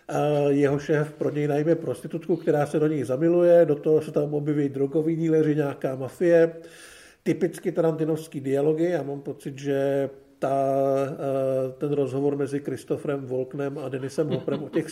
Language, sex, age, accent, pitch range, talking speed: Czech, male, 50-69, native, 140-165 Hz, 160 wpm